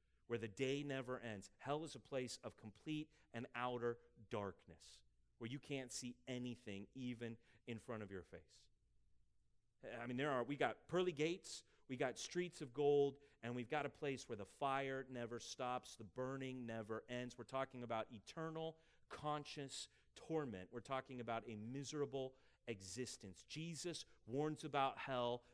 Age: 30-49